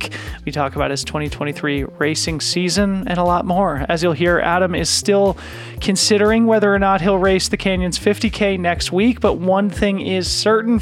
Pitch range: 165-195 Hz